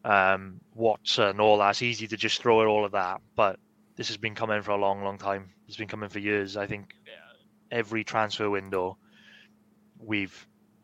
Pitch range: 100-115 Hz